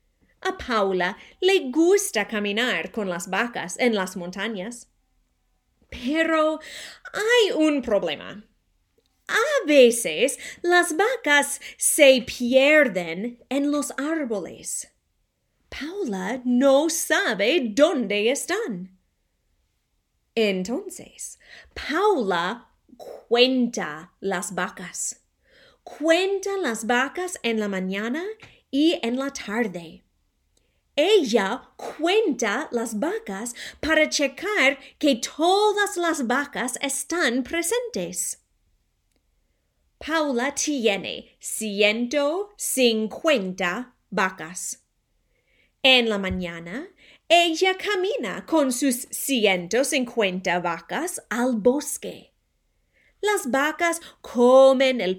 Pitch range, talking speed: 215-315 Hz, 80 wpm